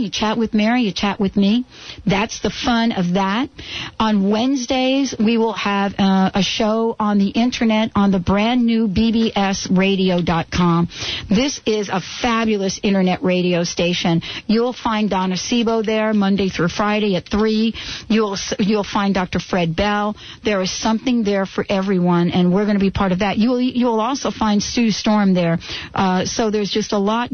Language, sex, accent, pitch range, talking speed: English, female, American, 185-225 Hz, 180 wpm